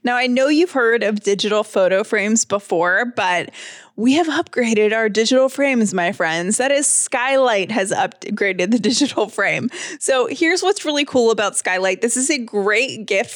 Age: 20-39